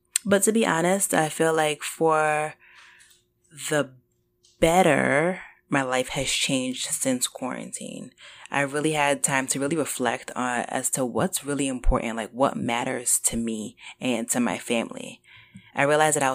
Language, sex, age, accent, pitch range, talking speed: English, female, 20-39, American, 130-160 Hz, 155 wpm